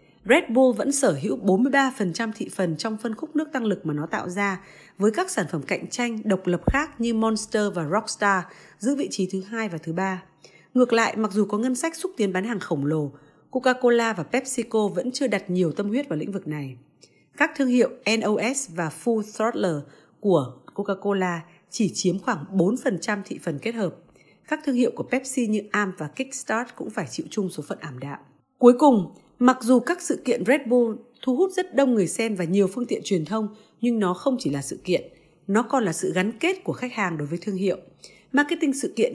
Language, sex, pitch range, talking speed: Vietnamese, female, 180-245 Hz, 220 wpm